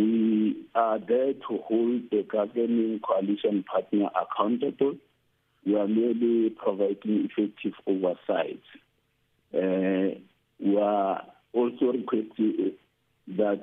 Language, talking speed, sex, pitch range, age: English, 90 wpm, male, 100-120 Hz, 50-69